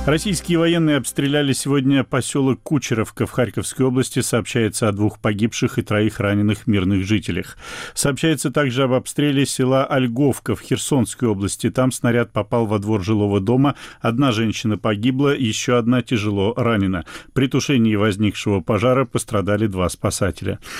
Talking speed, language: 140 wpm, Russian